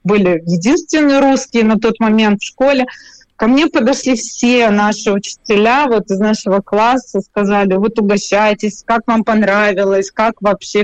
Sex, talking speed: female, 140 wpm